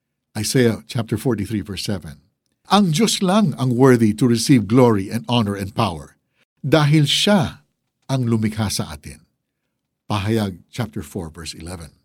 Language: Filipino